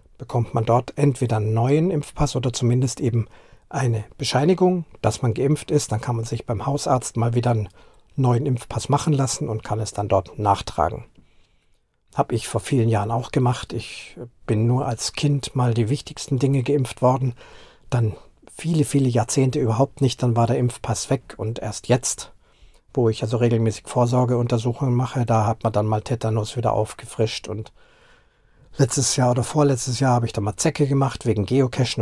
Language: German